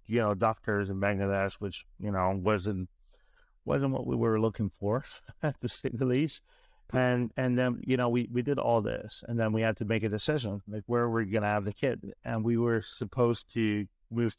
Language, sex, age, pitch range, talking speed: English, male, 30-49, 100-115 Hz, 205 wpm